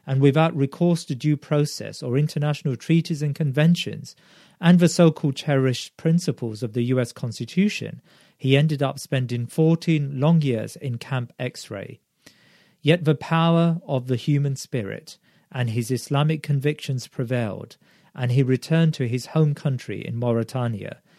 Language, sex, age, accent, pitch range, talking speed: English, male, 40-59, British, 125-165 Hz, 150 wpm